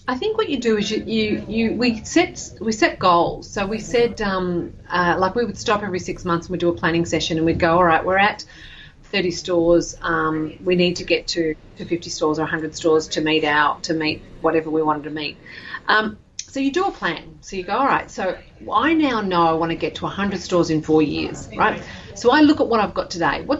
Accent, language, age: Australian, English, 40-59